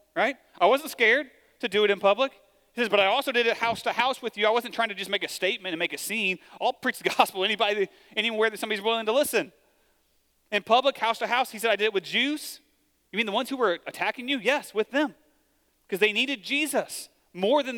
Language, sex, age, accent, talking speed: English, male, 30-49, American, 245 wpm